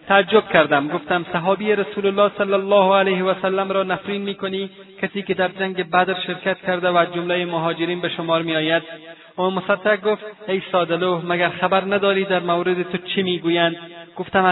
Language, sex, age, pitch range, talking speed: Persian, male, 30-49, 165-195 Hz, 170 wpm